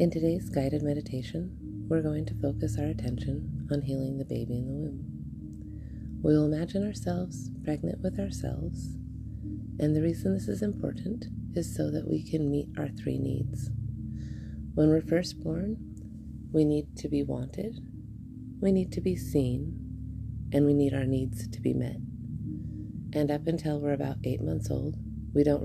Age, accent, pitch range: 30-49, American, 115-145 Hz